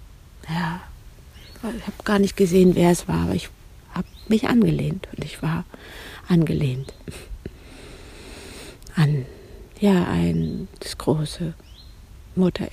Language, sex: German, female